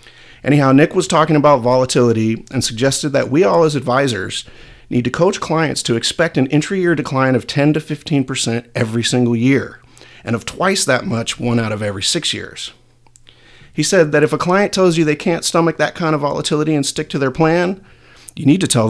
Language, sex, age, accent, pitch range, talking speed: English, male, 40-59, American, 115-145 Hz, 205 wpm